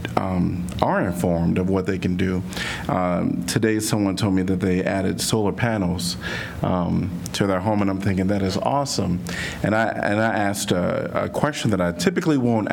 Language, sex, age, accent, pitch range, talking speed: English, male, 40-59, American, 90-110 Hz, 190 wpm